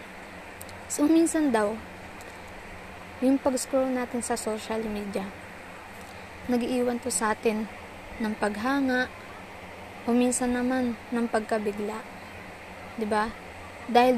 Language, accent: Filipino, native